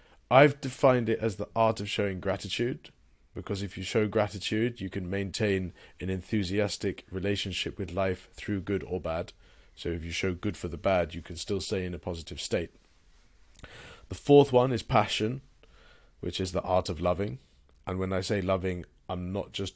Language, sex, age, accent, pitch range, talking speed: English, male, 30-49, British, 85-105 Hz, 185 wpm